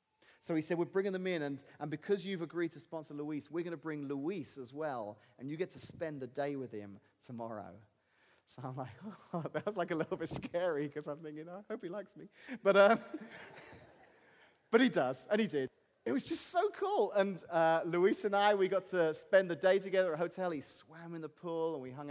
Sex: male